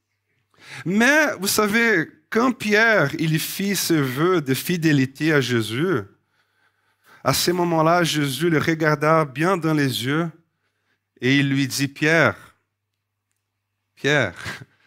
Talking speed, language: 115 wpm, French